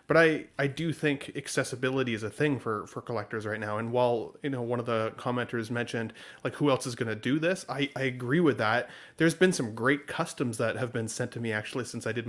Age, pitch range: 30-49, 115-145 Hz